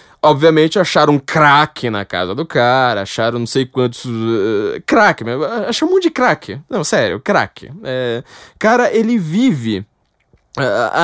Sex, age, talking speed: male, 20-39, 130 wpm